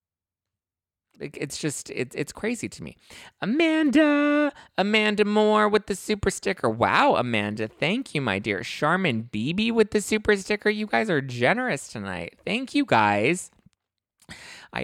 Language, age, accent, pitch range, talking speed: English, 20-39, American, 105-145 Hz, 135 wpm